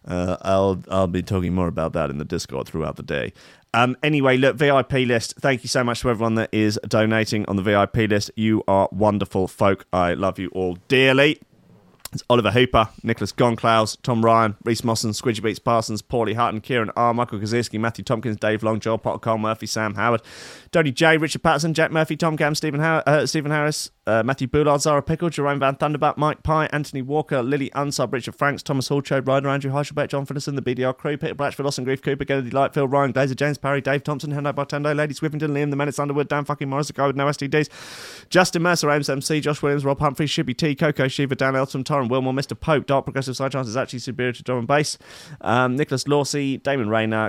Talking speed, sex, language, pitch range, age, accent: 215 wpm, male, English, 110-145 Hz, 30-49, British